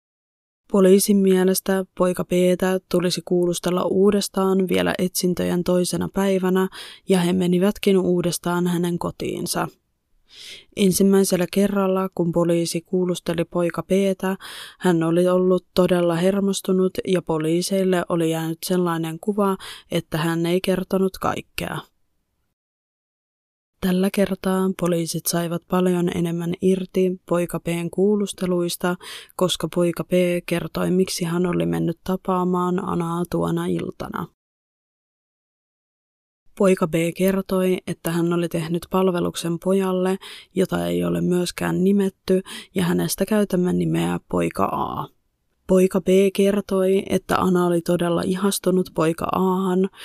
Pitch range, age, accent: 175-190 Hz, 20-39, native